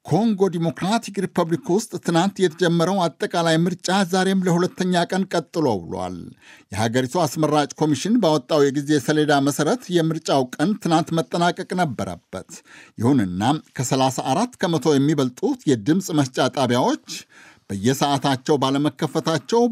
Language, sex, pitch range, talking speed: Amharic, male, 130-170 Hz, 95 wpm